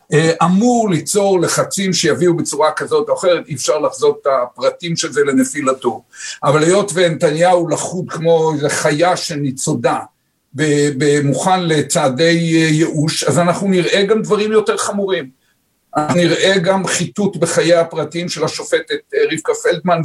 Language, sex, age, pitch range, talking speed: Hebrew, male, 60-79, 160-195 Hz, 125 wpm